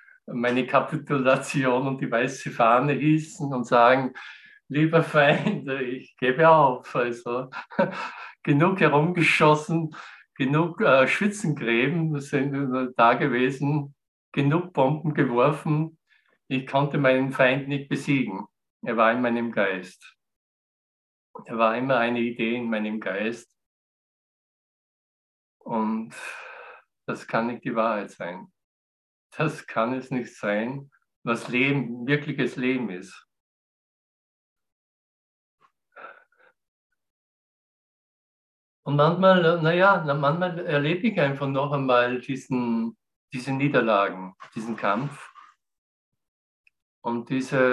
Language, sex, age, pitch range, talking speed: German, male, 50-69, 120-150 Hz, 95 wpm